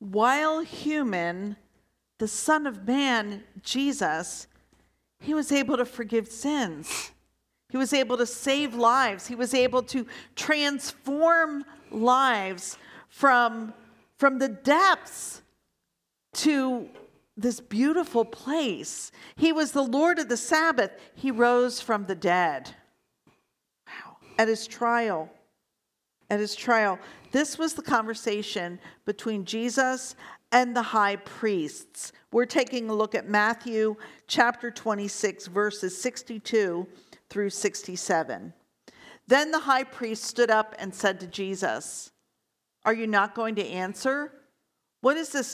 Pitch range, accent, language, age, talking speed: 210-270 Hz, American, English, 50-69, 125 wpm